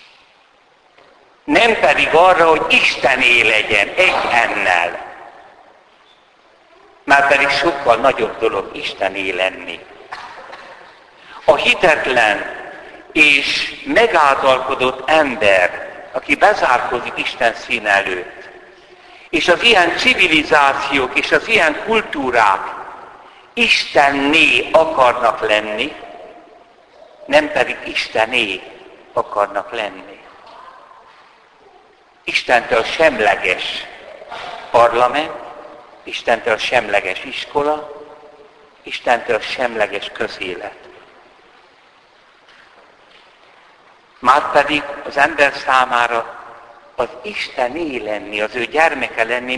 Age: 60-79